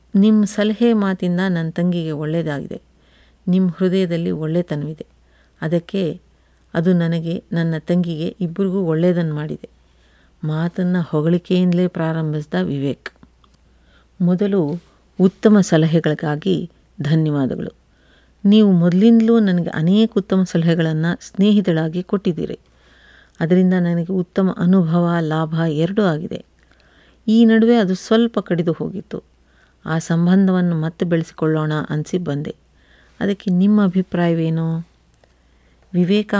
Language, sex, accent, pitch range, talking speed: Kannada, female, native, 155-185 Hz, 90 wpm